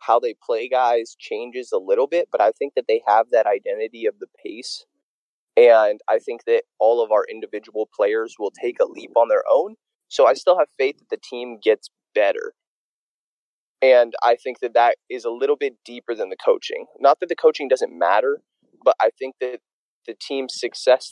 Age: 20-39